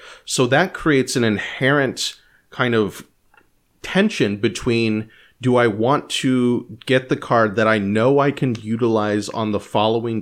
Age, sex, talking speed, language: 30-49, male, 145 wpm, English